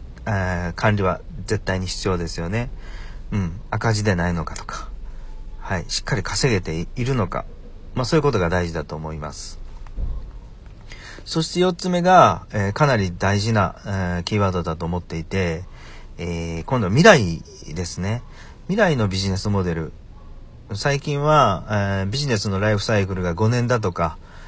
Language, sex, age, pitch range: Japanese, male, 40-59, 85-115 Hz